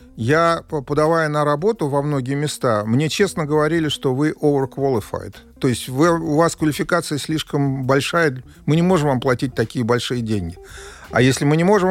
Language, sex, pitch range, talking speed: Russian, male, 120-160 Hz, 165 wpm